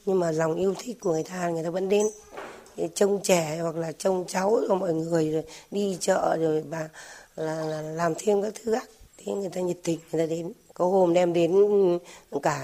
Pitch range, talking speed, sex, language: 170-200 Hz, 220 wpm, female, Vietnamese